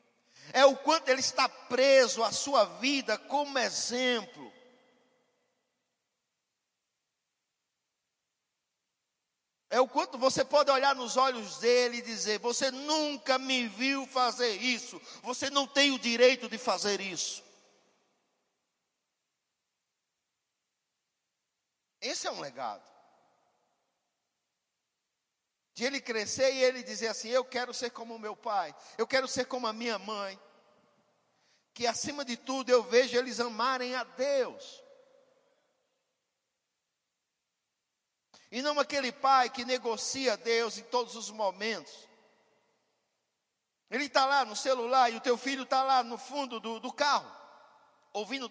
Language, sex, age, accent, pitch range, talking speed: Portuguese, male, 50-69, Brazilian, 230-265 Hz, 120 wpm